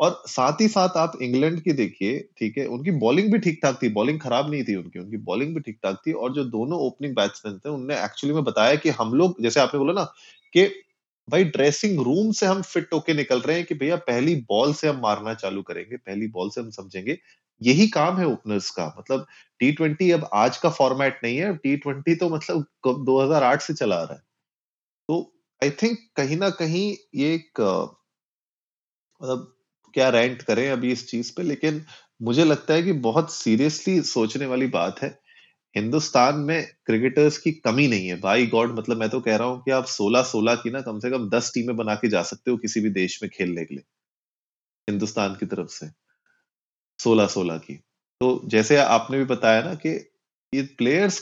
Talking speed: 190 wpm